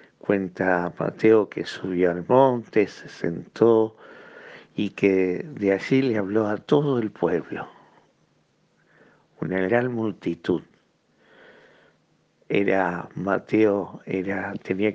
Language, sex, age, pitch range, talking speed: Spanish, male, 60-79, 100-125 Hz, 100 wpm